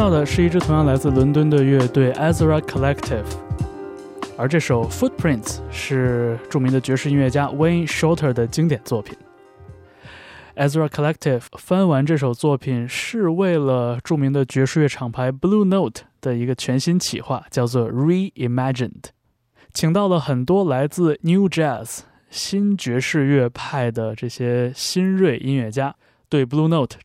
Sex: male